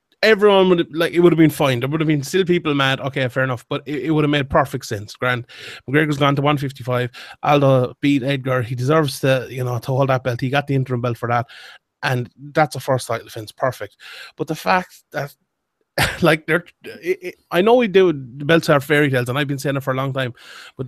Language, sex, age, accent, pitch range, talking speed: English, male, 30-49, Irish, 130-165 Hz, 245 wpm